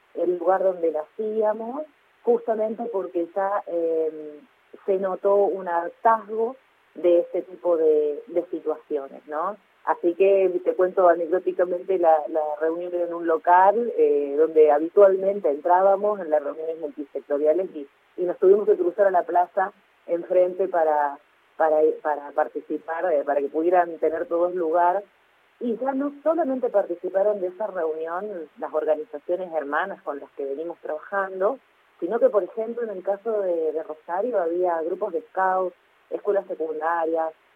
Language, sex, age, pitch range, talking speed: Spanish, female, 30-49, 165-210 Hz, 145 wpm